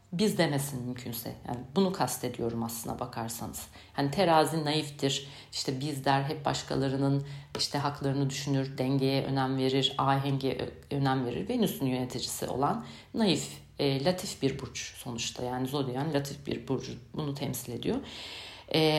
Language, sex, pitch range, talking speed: Turkish, female, 135-170 Hz, 135 wpm